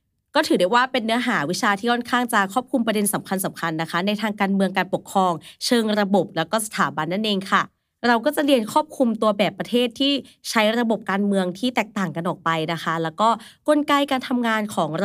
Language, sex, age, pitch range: Thai, female, 20-39, 185-245 Hz